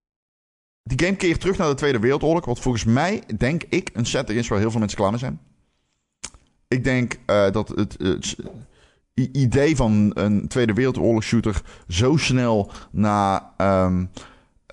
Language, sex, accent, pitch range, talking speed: Dutch, male, Dutch, 90-115 Hz, 165 wpm